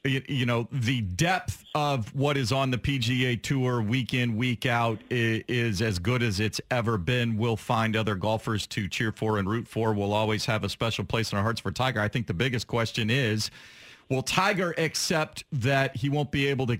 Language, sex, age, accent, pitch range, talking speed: English, male, 40-59, American, 120-155 Hz, 210 wpm